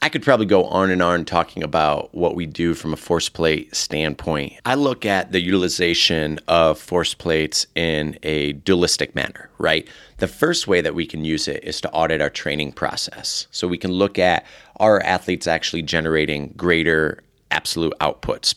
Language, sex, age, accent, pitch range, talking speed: English, male, 30-49, American, 75-90 Hz, 180 wpm